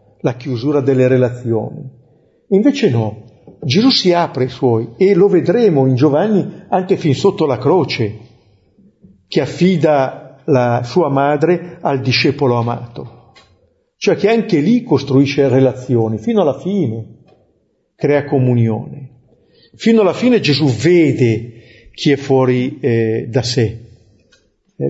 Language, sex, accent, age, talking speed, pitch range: Italian, male, native, 50-69, 125 wpm, 120-170 Hz